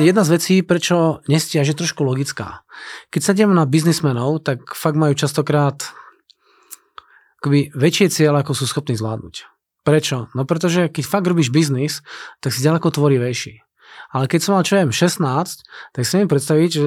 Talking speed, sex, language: 160 wpm, male, Czech